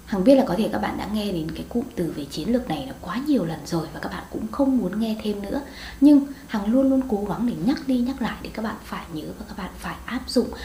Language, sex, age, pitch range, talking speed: Vietnamese, female, 20-39, 185-255 Hz, 300 wpm